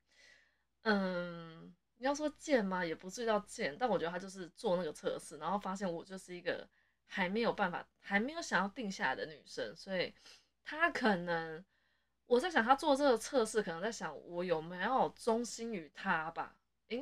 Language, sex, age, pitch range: Chinese, female, 20-39, 175-235 Hz